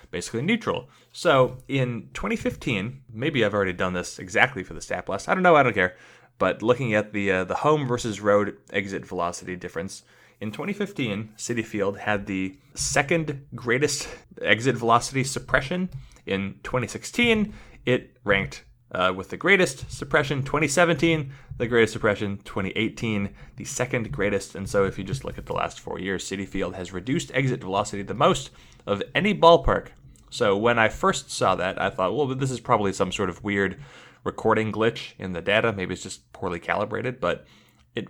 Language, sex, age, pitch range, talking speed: English, male, 20-39, 100-135 Hz, 175 wpm